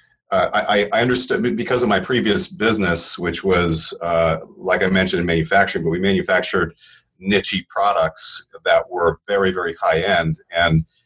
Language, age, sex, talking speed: English, 40-59, male, 155 wpm